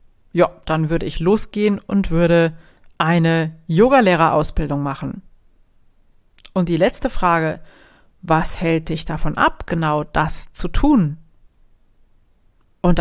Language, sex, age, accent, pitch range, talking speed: German, female, 40-59, German, 155-185 Hz, 115 wpm